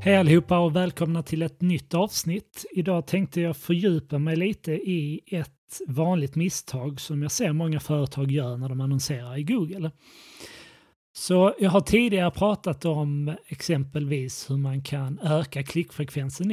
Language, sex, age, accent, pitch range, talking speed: Swedish, male, 30-49, native, 140-175 Hz, 150 wpm